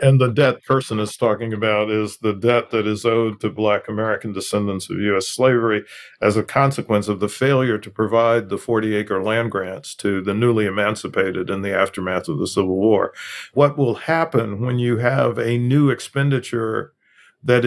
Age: 50-69